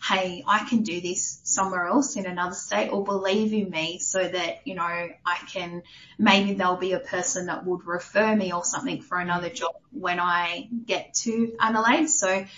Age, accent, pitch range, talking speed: 20-39, Australian, 175-225 Hz, 190 wpm